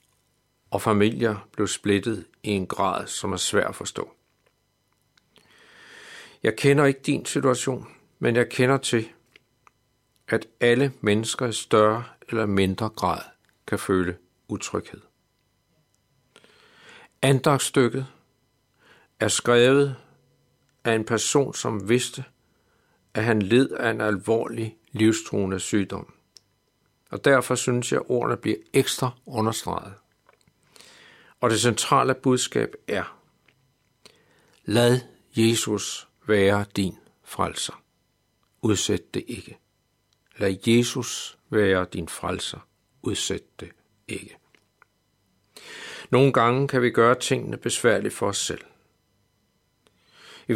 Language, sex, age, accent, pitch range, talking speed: Danish, male, 60-79, native, 105-130 Hz, 105 wpm